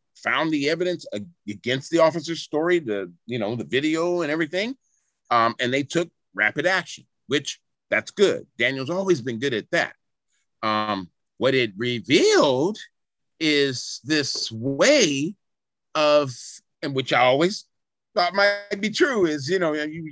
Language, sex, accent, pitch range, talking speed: English, male, American, 125-185 Hz, 145 wpm